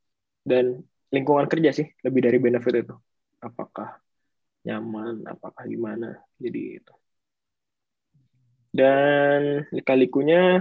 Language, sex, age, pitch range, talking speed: Indonesian, male, 20-39, 125-165 Hz, 90 wpm